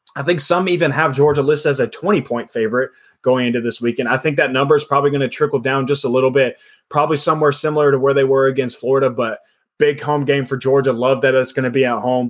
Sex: male